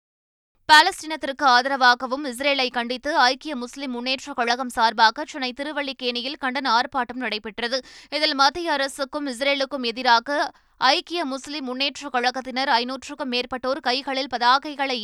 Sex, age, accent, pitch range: female, 20-39, native, 245-285 Hz